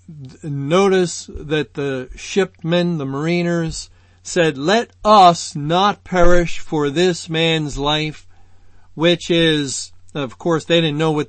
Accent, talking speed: American, 120 wpm